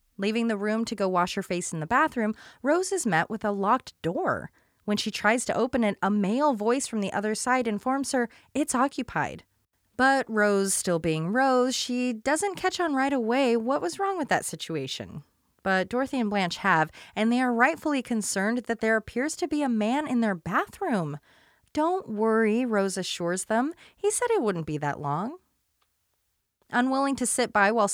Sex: female